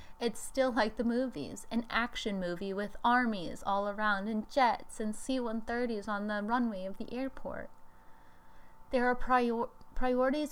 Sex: female